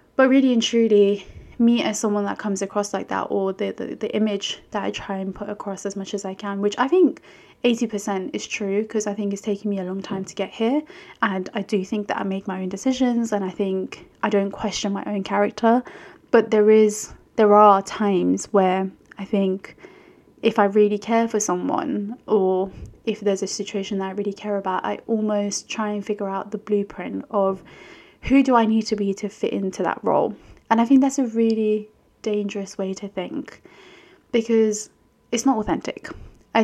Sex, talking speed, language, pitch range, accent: female, 205 wpm, English, 195-220 Hz, British